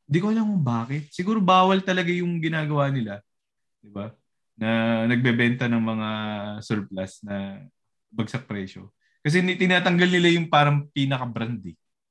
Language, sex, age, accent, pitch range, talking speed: Filipino, male, 20-39, native, 115-165 Hz, 135 wpm